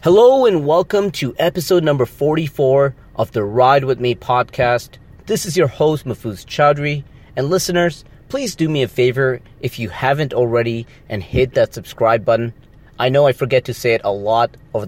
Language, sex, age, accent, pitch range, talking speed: English, male, 30-49, American, 115-145 Hz, 180 wpm